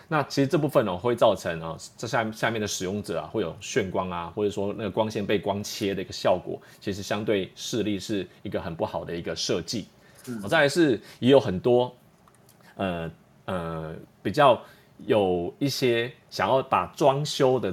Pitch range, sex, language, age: 100-135 Hz, male, Chinese, 30-49